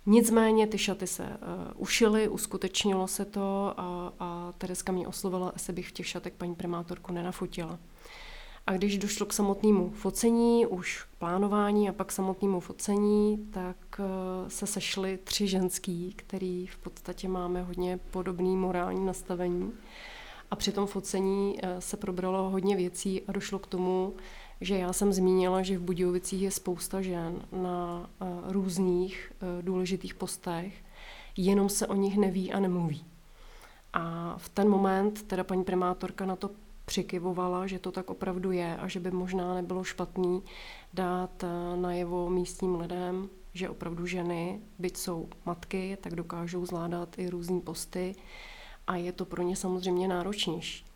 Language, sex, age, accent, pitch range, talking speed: Czech, female, 30-49, native, 180-195 Hz, 145 wpm